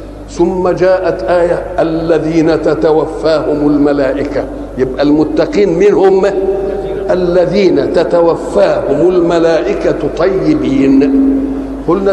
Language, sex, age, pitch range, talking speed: Arabic, male, 60-79, 180-230 Hz, 70 wpm